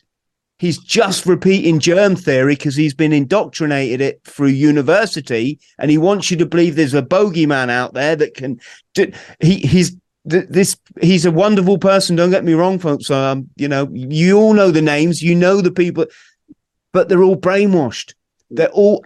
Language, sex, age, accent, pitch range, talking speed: English, male, 30-49, British, 145-180 Hz, 175 wpm